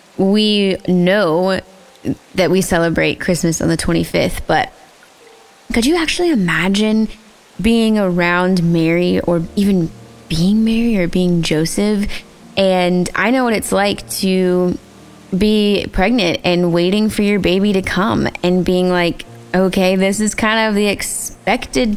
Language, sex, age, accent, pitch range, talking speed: English, female, 20-39, American, 175-225 Hz, 135 wpm